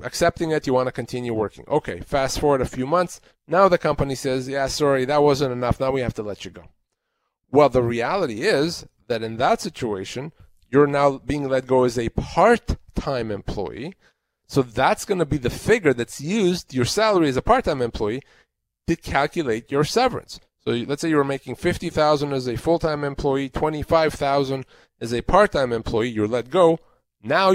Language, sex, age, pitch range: English, male, 30-49, 125-160 Hz